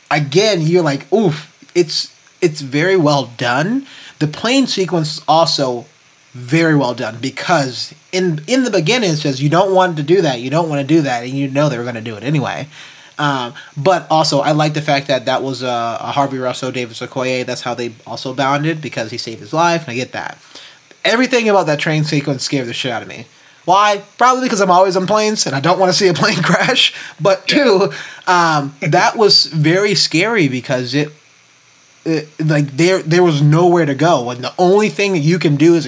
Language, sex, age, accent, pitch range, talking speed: English, male, 20-39, American, 135-170 Hz, 215 wpm